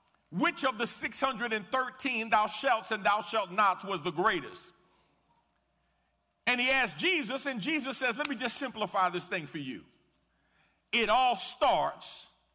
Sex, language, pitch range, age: male, English, 180-245 Hz, 50-69